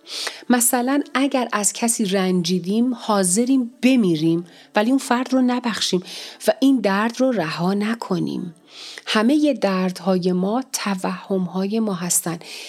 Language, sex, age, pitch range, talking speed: Persian, female, 40-59, 180-230 Hz, 120 wpm